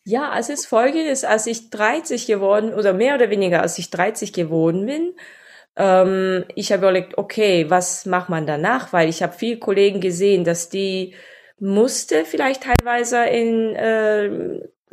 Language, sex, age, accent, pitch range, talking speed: German, female, 20-39, German, 180-215 Hz, 155 wpm